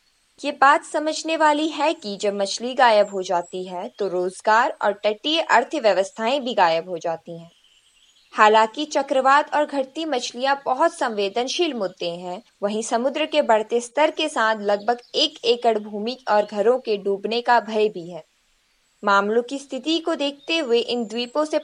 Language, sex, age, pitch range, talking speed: Hindi, female, 20-39, 200-280 Hz, 165 wpm